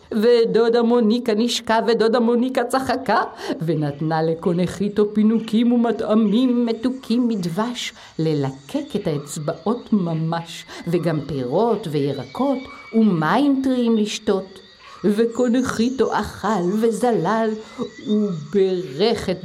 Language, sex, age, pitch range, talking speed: Hebrew, female, 50-69, 185-245 Hz, 85 wpm